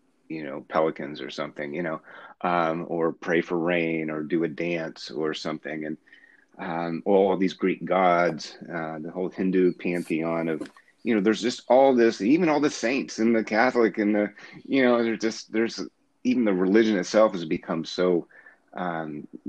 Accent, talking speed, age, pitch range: American, 180 wpm, 30-49, 85-100 Hz